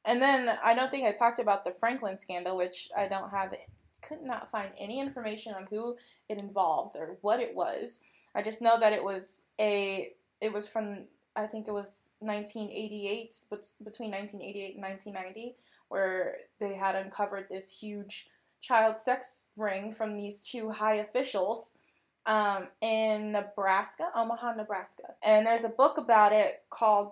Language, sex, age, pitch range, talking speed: English, female, 20-39, 200-240 Hz, 160 wpm